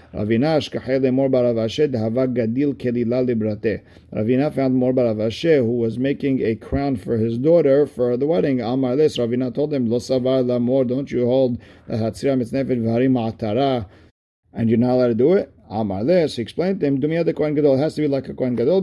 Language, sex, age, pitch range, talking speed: English, male, 50-69, 110-135 Hz, 165 wpm